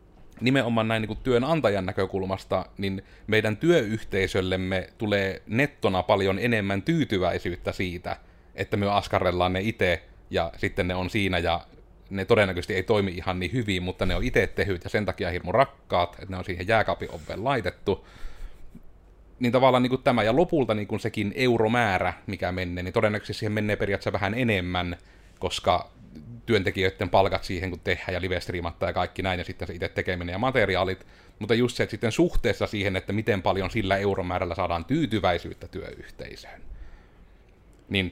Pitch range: 95-115 Hz